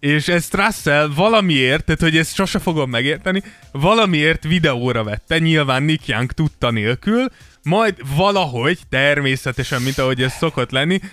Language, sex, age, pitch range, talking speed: Hungarian, male, 20-39, 125-160 Hz, 135 wpm